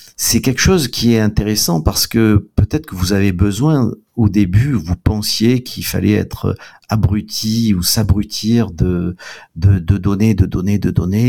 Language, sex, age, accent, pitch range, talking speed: French, male, 50-69, French, 95-115 Hz, 165 wpm